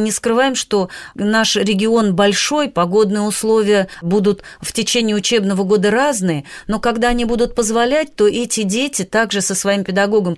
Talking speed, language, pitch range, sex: 155 wpm, Russian, 200-250 Hz, female